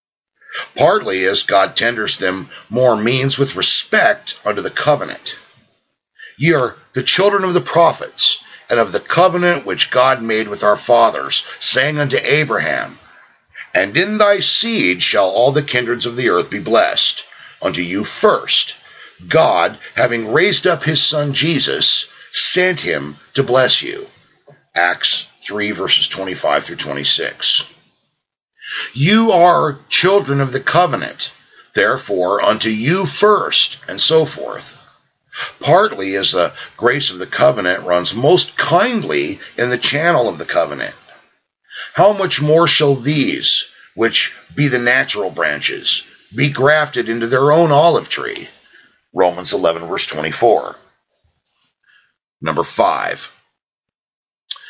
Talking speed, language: 130 wpm, English